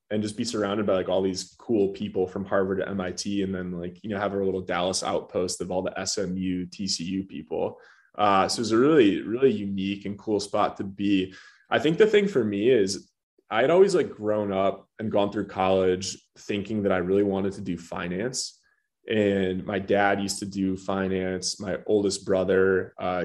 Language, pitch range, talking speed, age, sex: English, 95-105 Hz, 205 wpm, 20-39, male